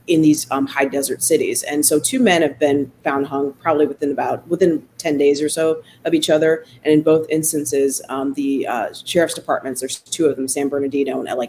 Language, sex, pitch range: English, female, 140-155 Hz